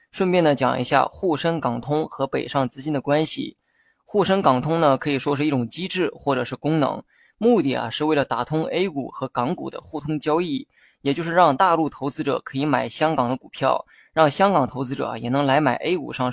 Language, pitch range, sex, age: Chinese, 130-165 Hz, male, 20-39